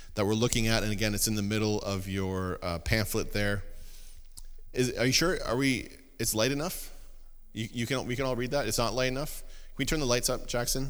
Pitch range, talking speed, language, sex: 90-120 Hz, 235 wpm, English, male